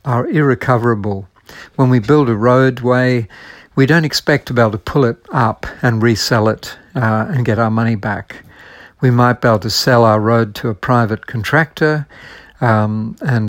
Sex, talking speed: male, 180 wpm